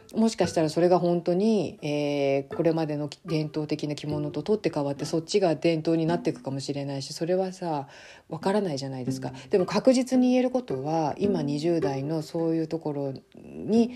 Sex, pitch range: female, 140-190 Hz